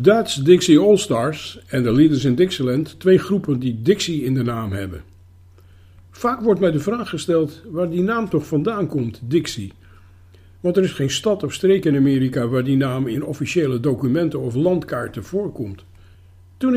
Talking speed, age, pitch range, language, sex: 170 wpm, 50-69, 110-175 Hz, Dutch, male